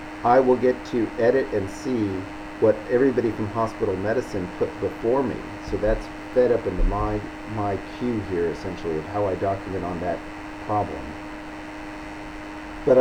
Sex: male